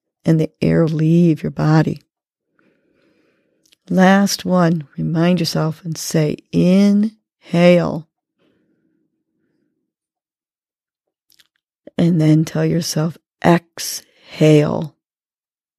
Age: 40-59